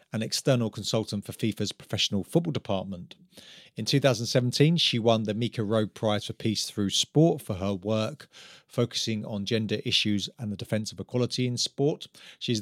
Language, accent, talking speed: English, British, 165 wpm